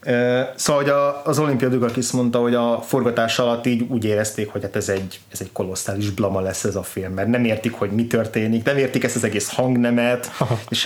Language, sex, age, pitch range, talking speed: Hungarian, male, 30-49, 110-125 Hz, 210 wpm